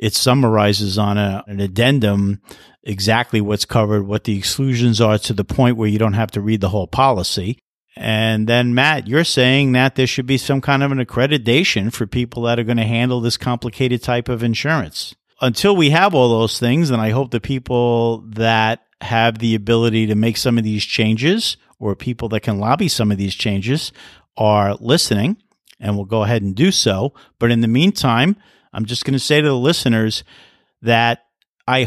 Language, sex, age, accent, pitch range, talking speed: English, male, 50-69, American, 110-135 Hz, 195 wpm